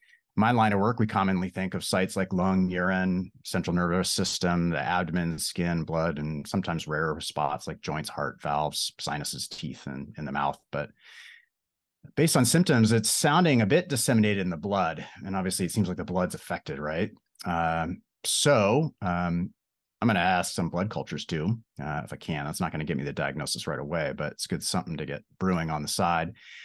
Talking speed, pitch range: 200 wpm, 90-115 Hz